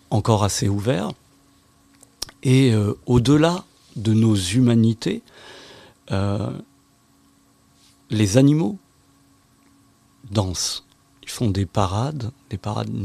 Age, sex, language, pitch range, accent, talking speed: 40-59, male, French, 105-125 Hz, French, 85 wpm